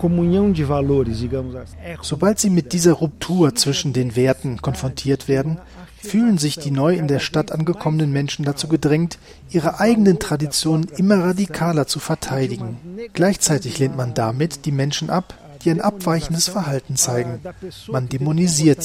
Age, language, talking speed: 40-59, German, 135 wpm